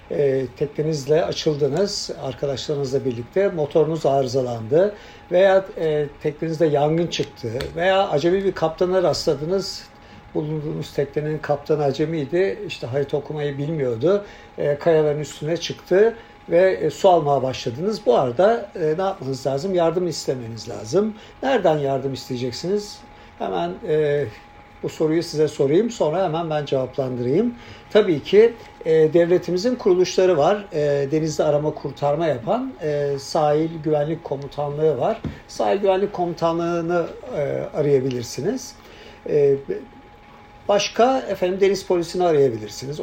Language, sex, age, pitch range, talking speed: Turkish, male, 60-79, 140-190 Hz, 110 wpm